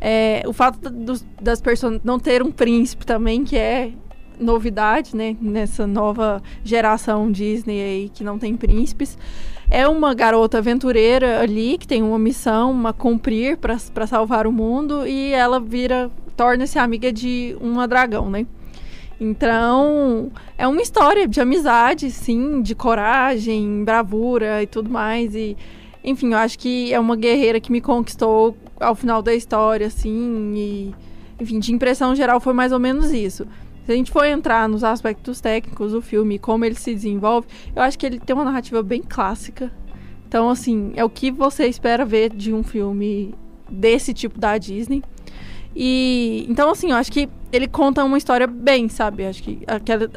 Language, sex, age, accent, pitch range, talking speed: Portuguese, female, 20-39, Brazilian, 220-255 Hz, 165 wpm